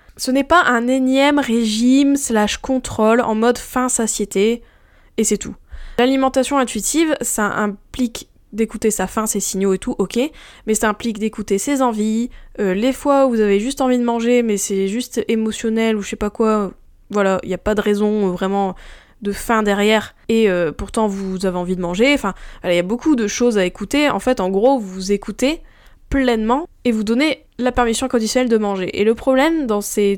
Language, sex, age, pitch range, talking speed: French, female, 10-29, 195-250 Hz, 200 wpm